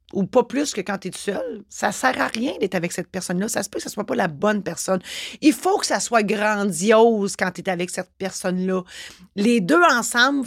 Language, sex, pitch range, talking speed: French, female, 185-260 Hz, 230 wpm